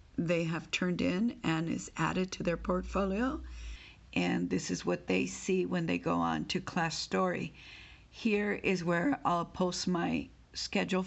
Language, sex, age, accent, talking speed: English, female, 50-69, American, 165 wpm